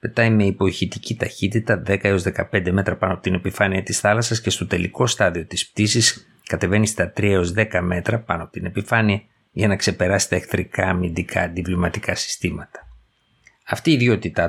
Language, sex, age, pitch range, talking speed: Greek, male, 50-69, 90-105 Hz, 170 wpm